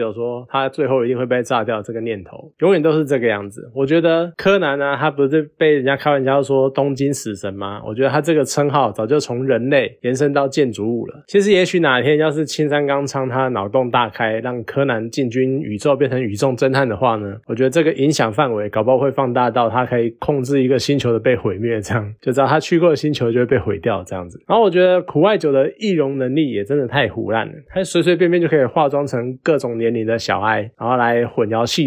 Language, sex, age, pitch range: Chinese, male, 20-39, 120-155 Hz